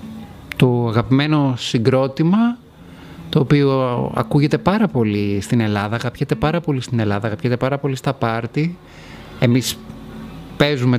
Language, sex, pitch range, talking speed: Greek, male, 120-170 Hz, 115 wpm